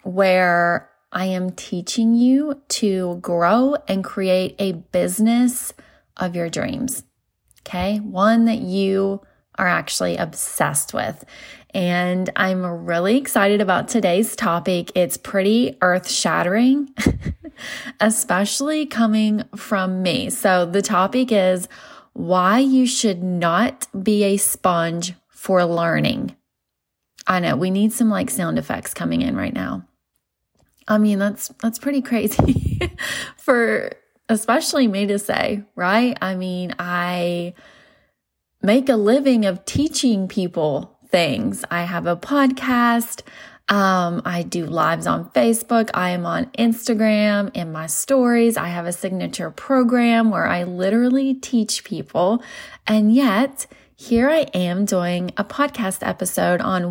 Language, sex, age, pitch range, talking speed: English, female, 20-39, 180-235 Hz, 130 wpm